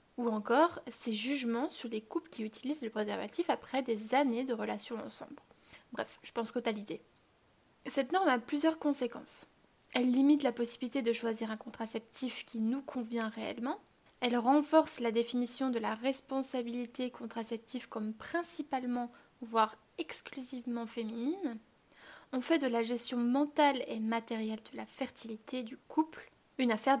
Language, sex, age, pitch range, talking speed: French, female, 20-39, 225-280 Hz, 145 wpm